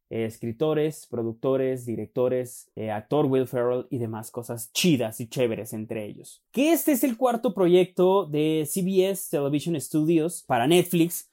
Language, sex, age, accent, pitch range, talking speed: Spanish, male, 30-49, Mexican, 130-195 Hz, 150 wpm